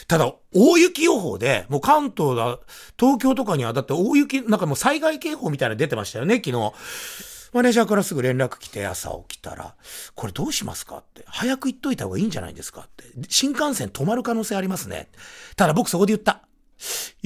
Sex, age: male, 40-59